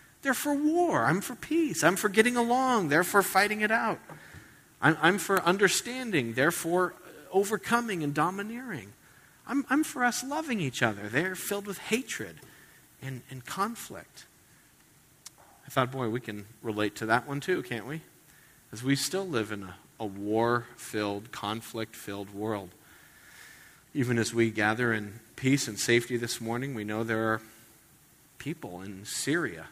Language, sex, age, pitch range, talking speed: English, male, 40-59, 105-145 Hz, 155 wpm